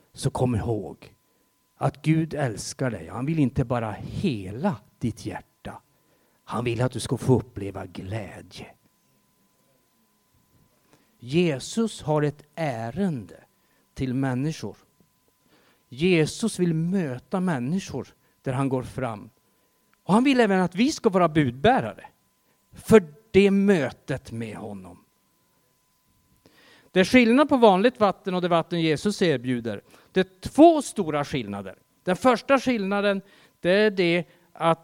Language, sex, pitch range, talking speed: Swedish, male, 125-185 Hz, 125 wpm